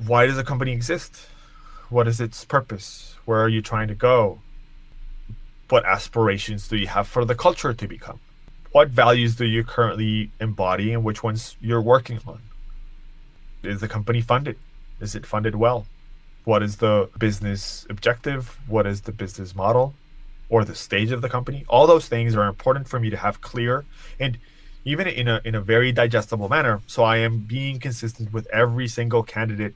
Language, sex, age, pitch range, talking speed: English, male, 20-39, 110-130 Hz, 180 wpm